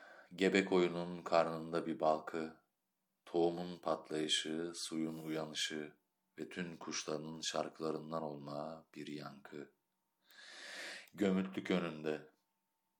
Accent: native